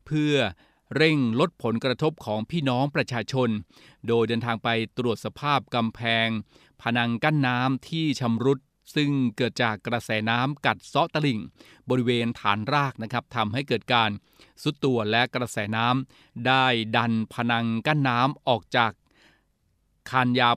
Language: Thai